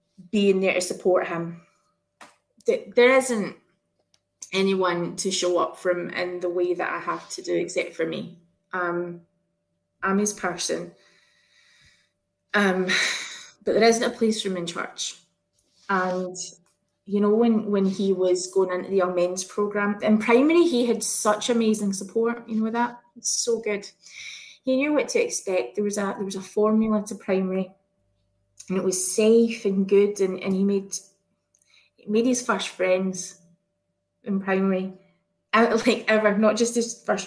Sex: female